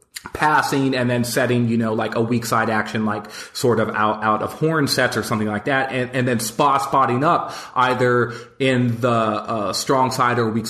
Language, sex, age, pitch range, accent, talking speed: English, male, 30-49, 115-140 Hz, American, 210 wpm